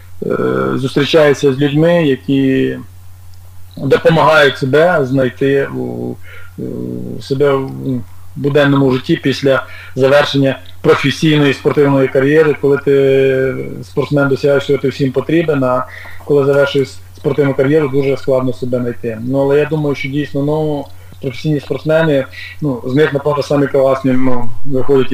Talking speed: 125 wpm